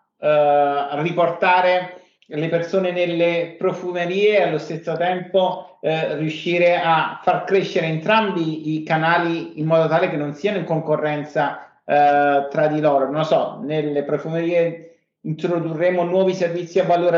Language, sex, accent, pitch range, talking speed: Italian, male, native, 145-175 Hz, 140 wpm